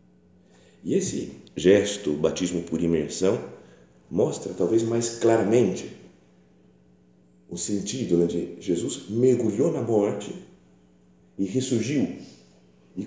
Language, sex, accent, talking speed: Portuguese, male, Brazilian, 100 wpm